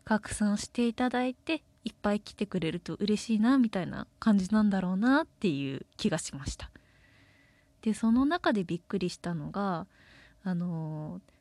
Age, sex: 20-39, female